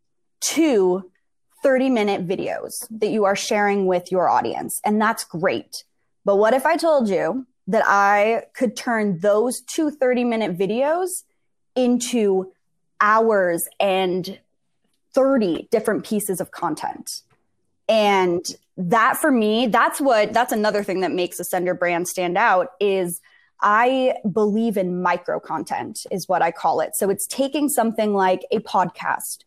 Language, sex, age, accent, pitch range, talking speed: English, female, 20-39, American, 195-275 Hz, 145 wpm